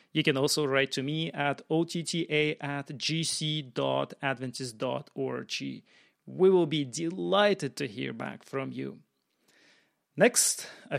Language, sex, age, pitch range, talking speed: English, male, 30-49, 140-180 Hz, 115 wpm